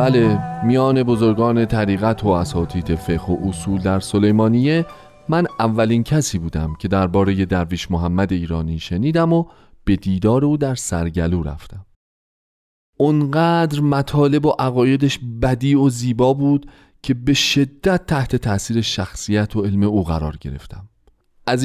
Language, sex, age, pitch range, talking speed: Persian, male, 40-59, 95-140 Hz, 135 wpm